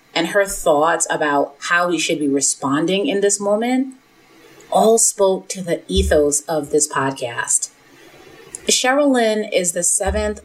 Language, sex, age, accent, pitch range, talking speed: English, female, 30-49, American, 150-195 Hz, 145 wpm